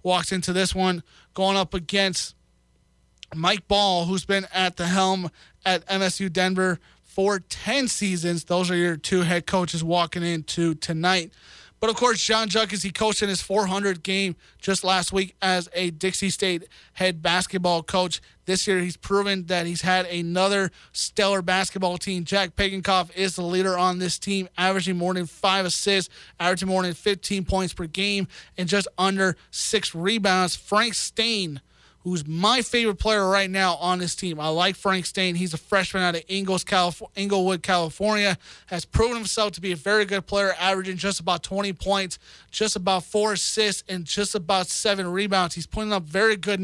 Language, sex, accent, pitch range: English, male, American, 180-205 Hz